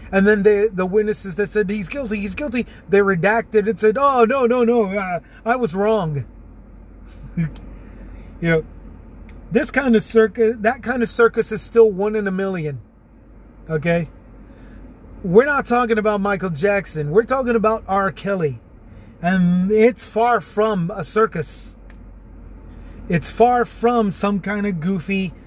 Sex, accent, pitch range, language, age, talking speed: male, American, 150-225 Hz, English, 30-49, 150 wpm